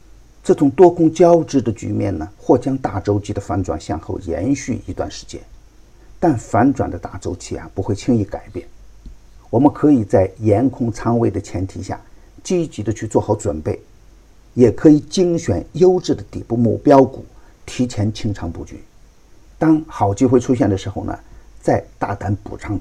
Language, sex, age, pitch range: Chinese, male, 50-69, 100-125 Hz